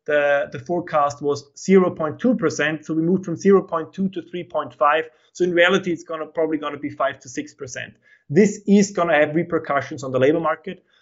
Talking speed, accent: 185 wpm, German